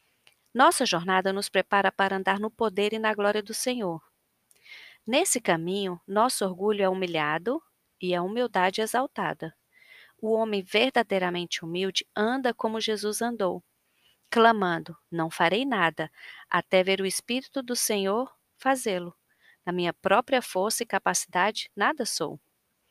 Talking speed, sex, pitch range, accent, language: 135 wpm, female, 185-230 Hz, Brazilian, Portuguese